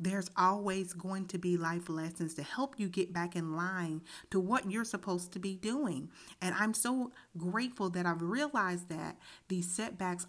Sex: female